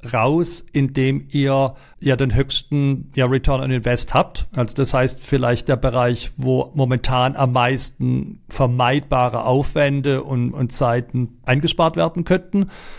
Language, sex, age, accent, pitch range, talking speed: German, male, 40-59, German, 120-140 Hz, 135 wpm